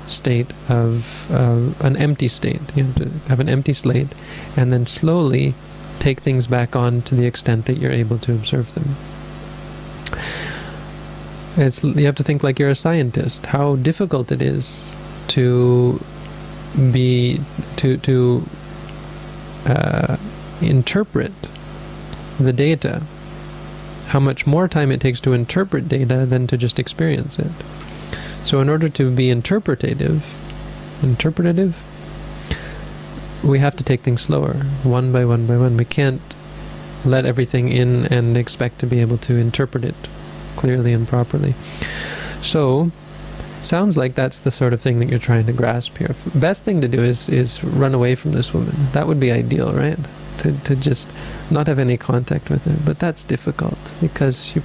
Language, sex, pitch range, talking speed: English, male, 125-150 Hz, 155 wpm